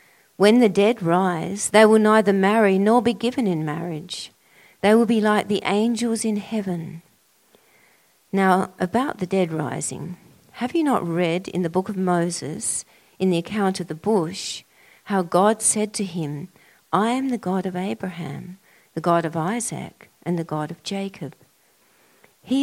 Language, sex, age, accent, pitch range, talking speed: English, female, 50-69, Australian, 170-210 Hz, 165 wpm